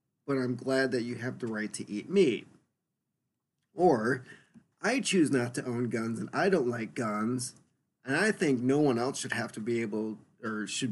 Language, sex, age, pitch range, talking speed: English, male, 40-59, 115-155 Hz, 200 wpm